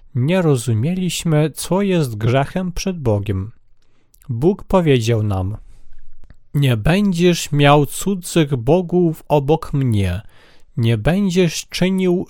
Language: Polish